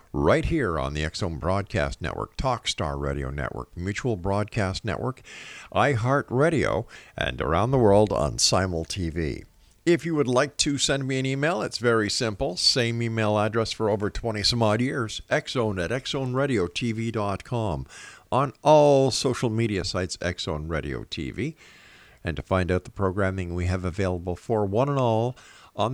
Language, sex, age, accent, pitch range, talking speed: English, male, 50-69, American, 90-130 Hz, 155 wpm